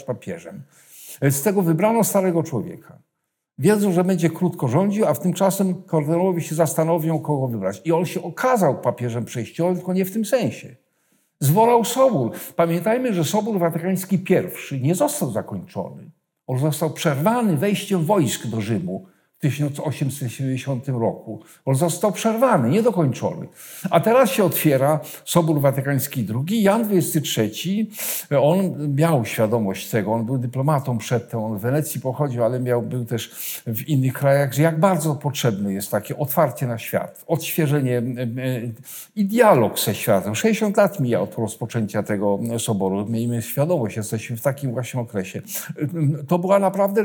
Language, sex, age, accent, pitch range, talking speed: Polish, male, 50-69, native, 130-180 Hz, 140 wpm